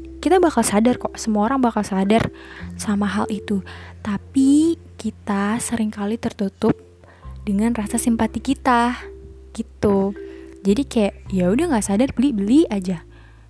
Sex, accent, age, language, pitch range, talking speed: female, native, 20-39, Indonesian, 185-230 Hz, 125 wpm